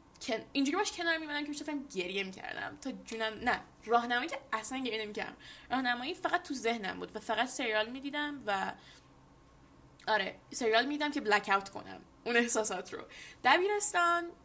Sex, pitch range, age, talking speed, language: female, 210-285 Hz, 10-29, 160 wpm, Persian